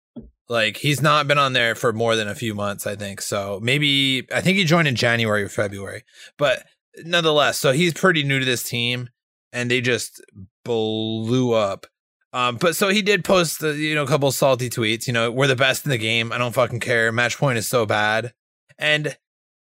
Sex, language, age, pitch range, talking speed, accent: male, English, 20-39, 115-150 Hz, 215 wpm, American